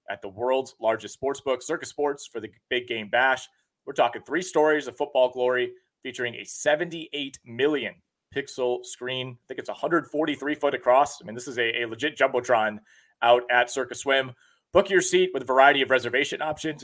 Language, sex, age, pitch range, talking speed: English, male, 30-49, 120-150 Hz, 185 wpm